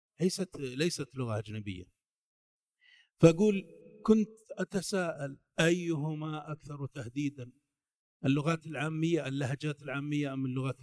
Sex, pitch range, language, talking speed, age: male, 130-170 Hz, Arabic, 90 wpm, 50-69